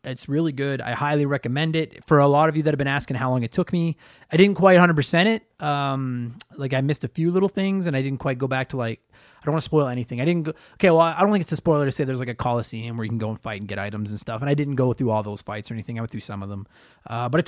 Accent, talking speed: American, 325 wpm